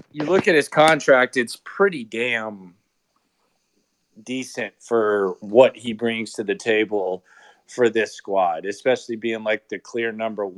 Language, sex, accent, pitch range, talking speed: English, male, American, 120-140 Hz, 140 wpm